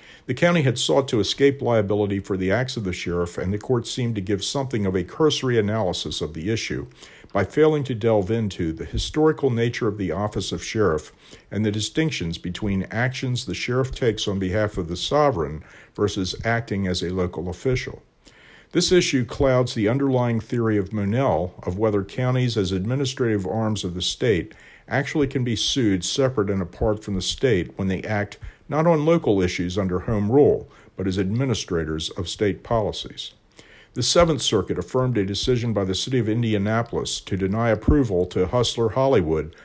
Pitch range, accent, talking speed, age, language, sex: 95-125 Hz, American, 180 wpm, 50-69, English, male